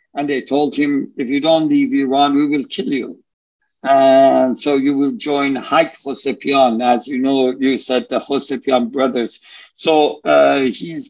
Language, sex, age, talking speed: English, male, 60-79, 170 wpm